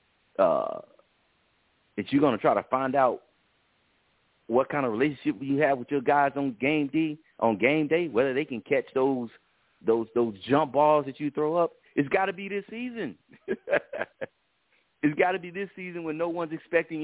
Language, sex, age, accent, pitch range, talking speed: English, male, 40-59, American, 110-155 Hz, 185 wpm